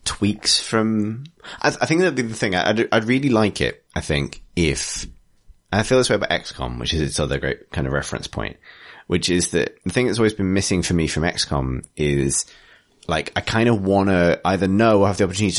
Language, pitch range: English, 75-105 Hz